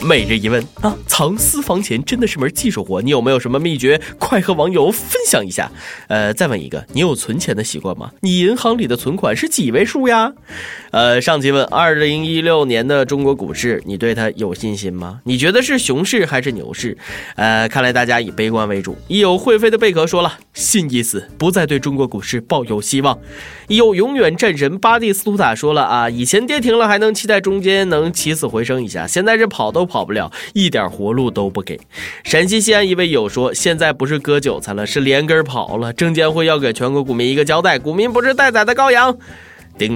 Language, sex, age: Chinese, male, 20-39